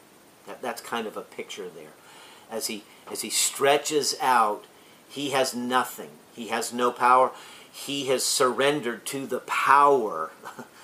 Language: English